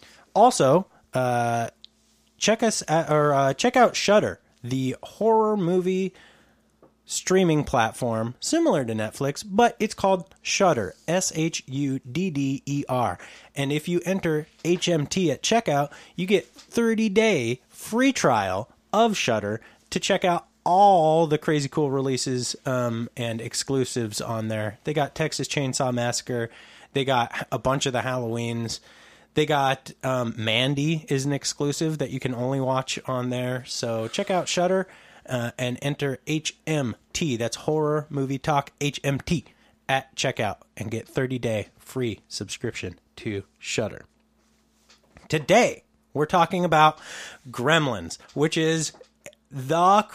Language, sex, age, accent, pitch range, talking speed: English, male, 20-39, American, 120-165 Hz, 135 wpm